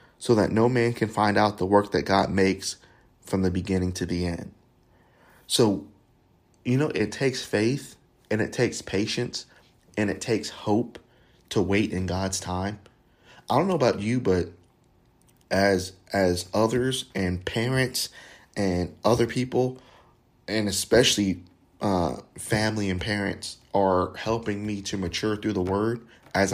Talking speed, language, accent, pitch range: 150 wpm, English, American, 95-115 Hz